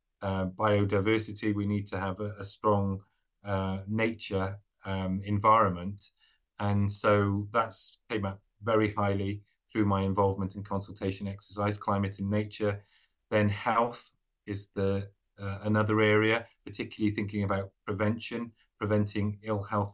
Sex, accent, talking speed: male, British, 130 wpm